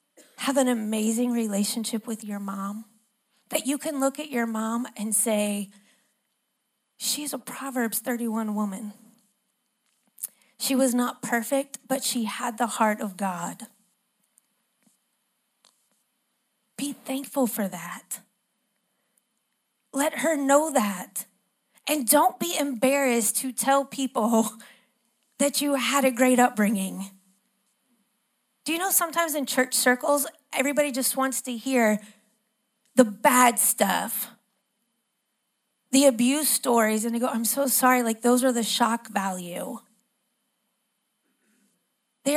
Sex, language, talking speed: female, English, 120 wpm